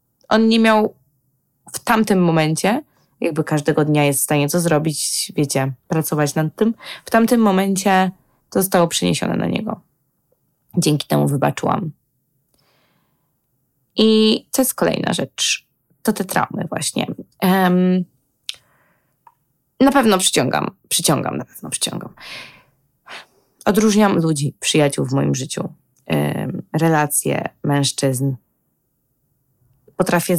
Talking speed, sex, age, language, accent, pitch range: 110 wpm, female, 20-39, Polish, native, 140-195 Hz